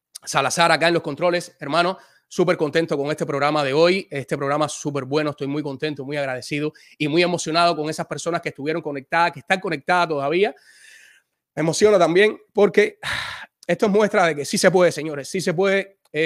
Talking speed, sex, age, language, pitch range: 190 wpm, male, 30-49, Spanish, 145-175 Hz